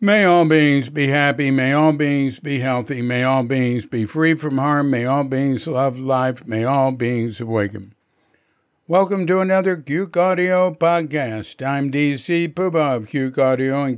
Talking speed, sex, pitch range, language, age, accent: 170 wpm, male, 125-155 Hz, English, 60-79, American